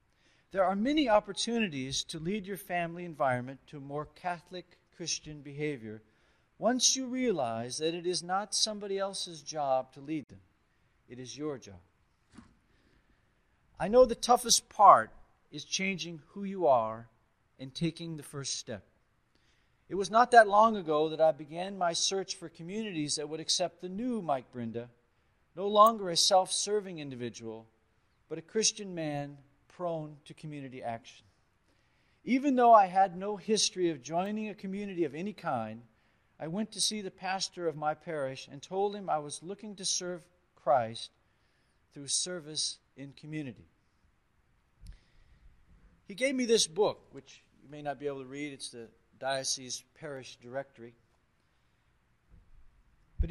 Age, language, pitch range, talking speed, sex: 50-69, English, 130-195 Hz, 150 wpm, male